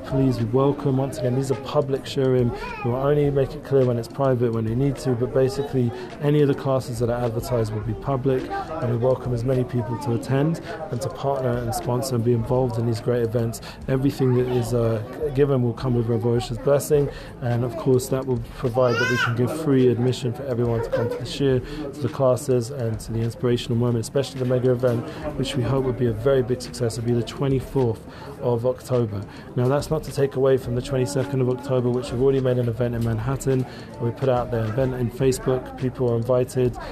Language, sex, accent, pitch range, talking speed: English, male, British, 120-135 Hz, 225 wpm